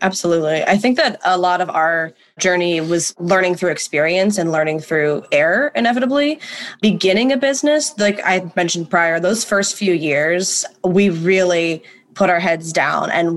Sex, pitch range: female, 170-205 Hz